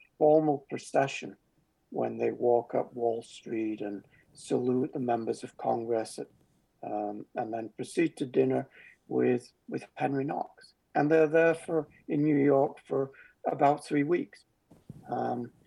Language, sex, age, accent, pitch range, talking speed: English, male, 60-79, British, 120-150 Hz, 140 wpm